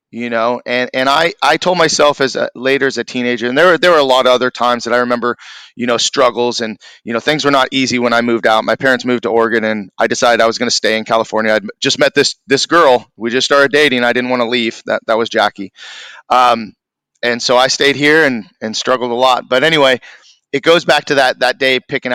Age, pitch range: 30-49, 120-145 Hz